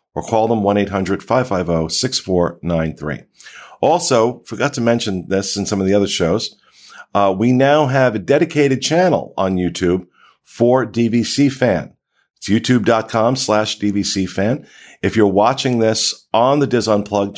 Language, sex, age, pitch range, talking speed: English, male, 50-69, 90-120 Hz, 140 wpm